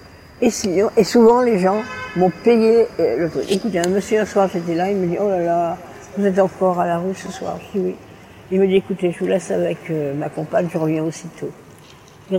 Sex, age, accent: female, 60-79, French